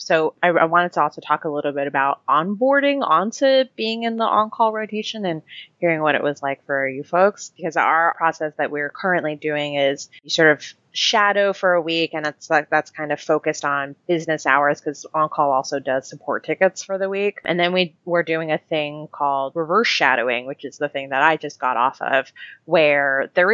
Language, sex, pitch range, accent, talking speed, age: English, female, 140-170 Hz, American, 210 wpm, 20-39